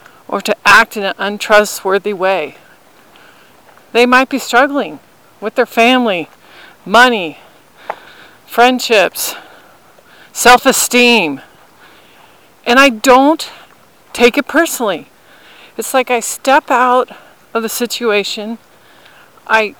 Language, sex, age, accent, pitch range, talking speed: English, female, 40-59, American, 220-270 Hz, 95 wpm